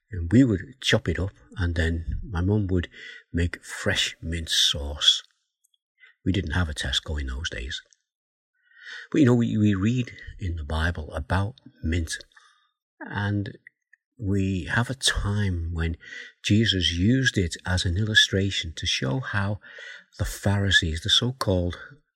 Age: 50-69